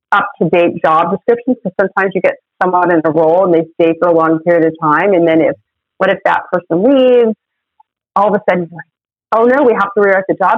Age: 30-49